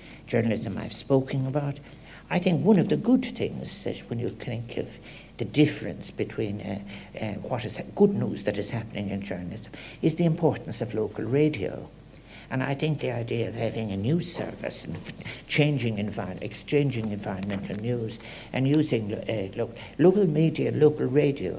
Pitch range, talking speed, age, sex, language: 105-145 Hz, 160 wpm, 60-79, male, English